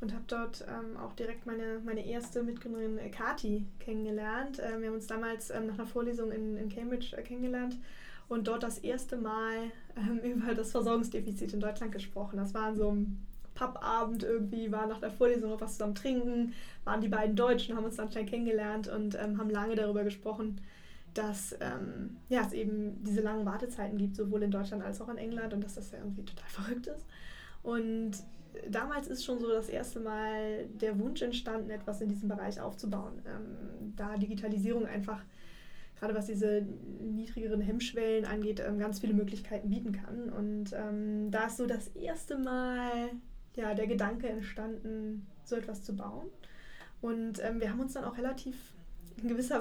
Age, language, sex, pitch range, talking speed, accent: 10-29, German, female, 210-235 Hz, 175 wpm, German